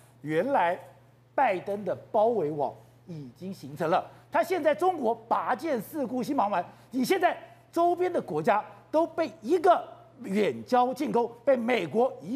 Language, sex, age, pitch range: Chinese, male, 50-69, 190-310 Hz